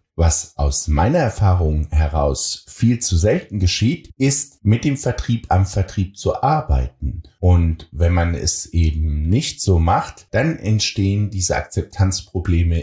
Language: German